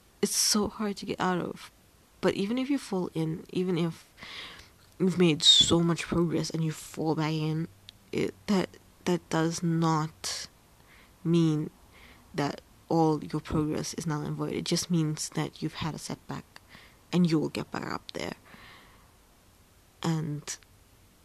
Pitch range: 155-185 Hz